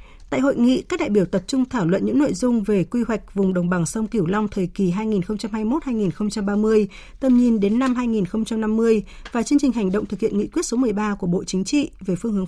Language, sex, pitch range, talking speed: Vietnamese, female, 195-240 Hz, 230 wpm